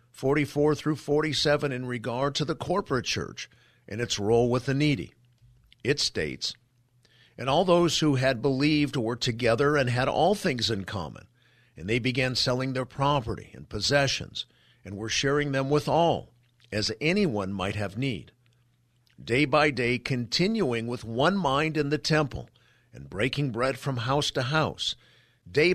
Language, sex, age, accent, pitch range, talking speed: English, male, 50-69, American, 120-145 Hz, 160 wpm